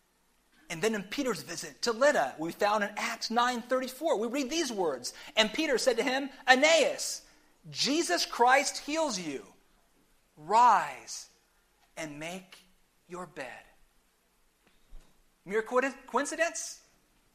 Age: 40-59